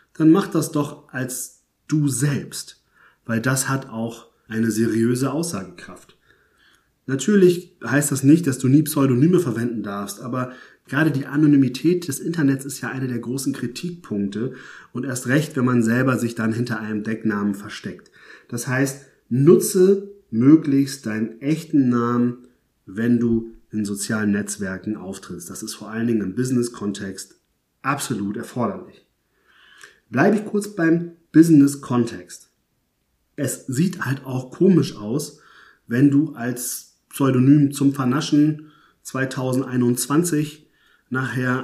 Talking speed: 130 wpm